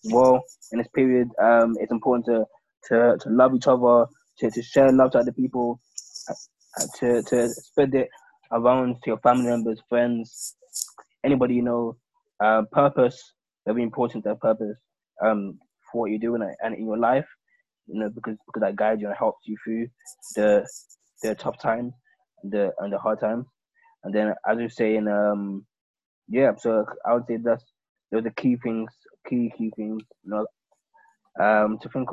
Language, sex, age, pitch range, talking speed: English, male, 20-39, 115-150 Hz, 180 wpm